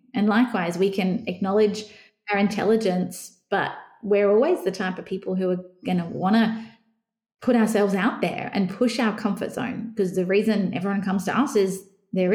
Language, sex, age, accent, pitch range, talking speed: English, female, 20-39, Australian, 190-225 Hz, 185 wpm